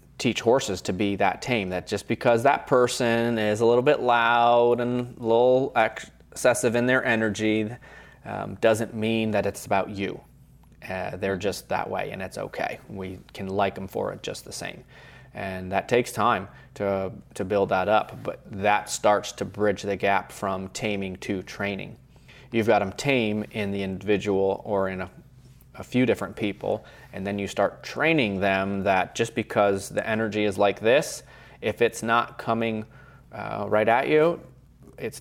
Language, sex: English, male